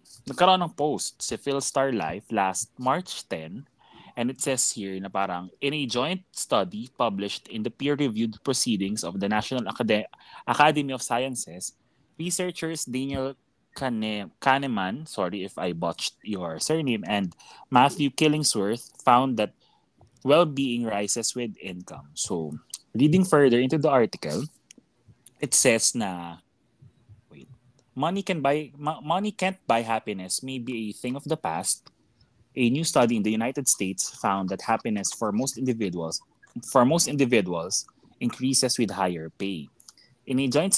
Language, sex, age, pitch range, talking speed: Filipino, male, 20-39, 105-140 Hz, 140 wpm